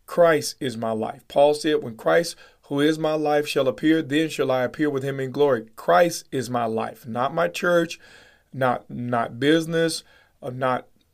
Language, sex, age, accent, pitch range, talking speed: English, male, 40-59, American, 130-165 Hz, 180 wpm